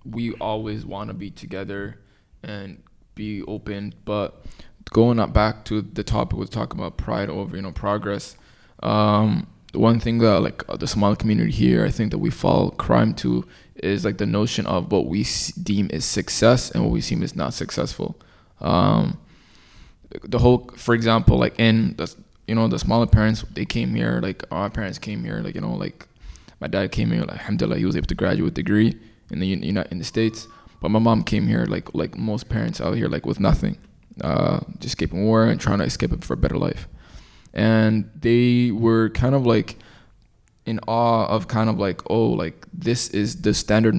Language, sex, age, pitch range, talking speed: English, male, 20-39, 100-115 Hz, 200 wpm